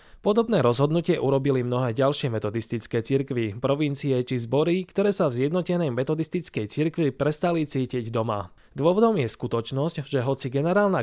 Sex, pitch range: male, 120-150 Hz